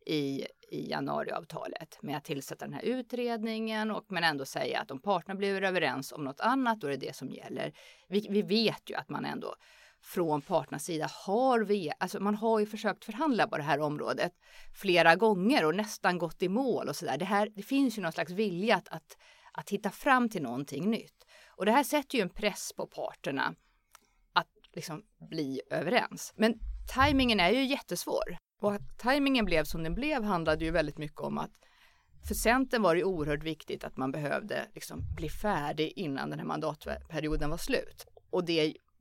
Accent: native